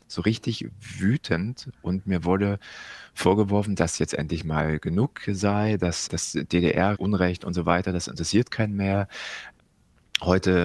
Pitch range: 85-105 Hz